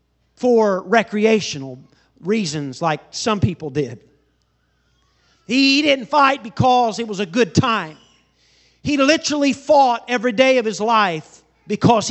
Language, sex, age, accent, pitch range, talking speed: English, male, 40-59, American, 210-260 Hz, 125 wpm